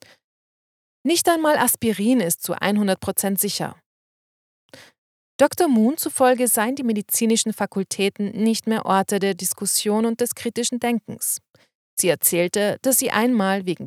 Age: 30-49